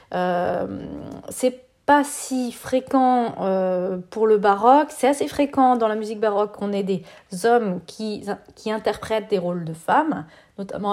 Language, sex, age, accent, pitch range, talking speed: French, female, 40-59, French, 195-240 Hz, 155 wpm